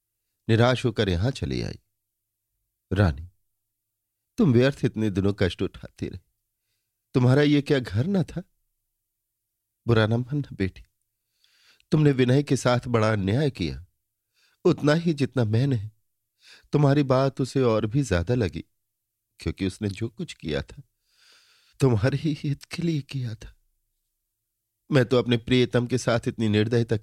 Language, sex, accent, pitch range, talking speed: Hindi, male, native, 110-135 Hz, 135 wpm